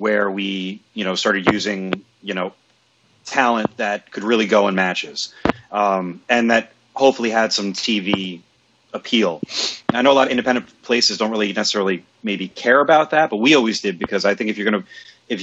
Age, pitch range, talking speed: 30-49, 100-120 Hz, 195 wpm